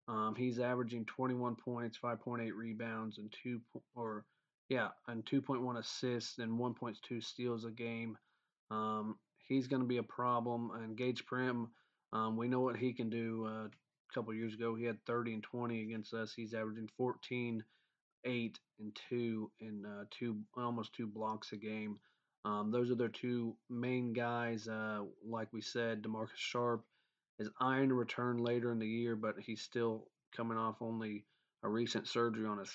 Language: English